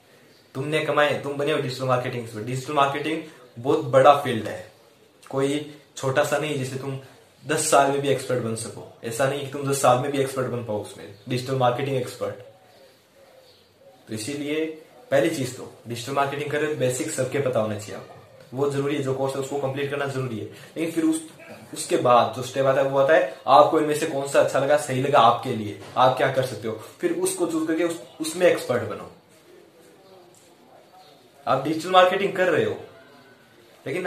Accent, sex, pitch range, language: native, male, 130-155 Hz, Hindi